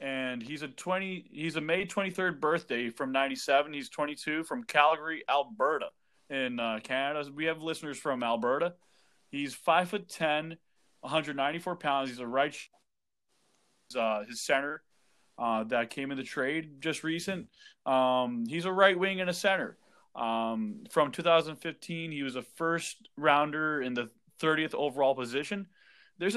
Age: 20-39